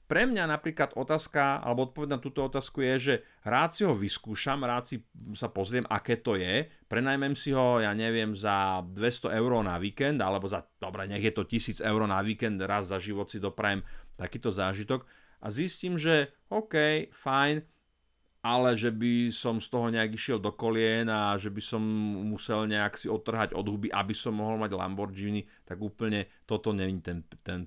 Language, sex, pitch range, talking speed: Slovak, male, 105-140 Hz, 185 wpm